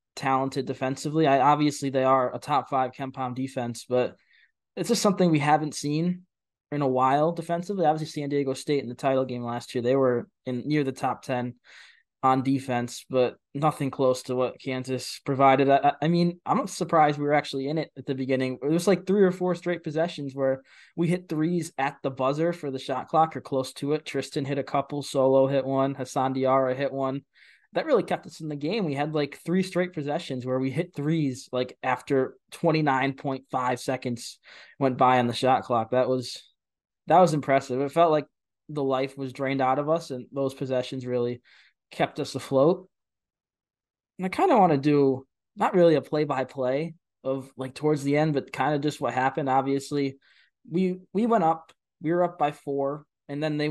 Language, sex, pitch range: English, male, 130-155 Hz